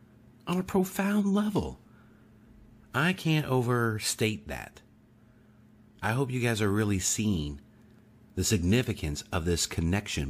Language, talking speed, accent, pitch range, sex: English, 110 wpm, American, 90-125 Hz, male